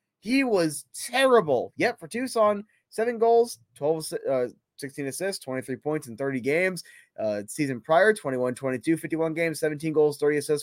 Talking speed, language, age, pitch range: 145 wpm, English, 20-39, 145-220 Hz